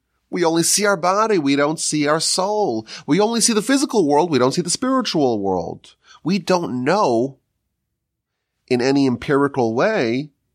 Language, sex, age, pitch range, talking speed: English, male, 30-49, 110-165 Hz, 165 wpm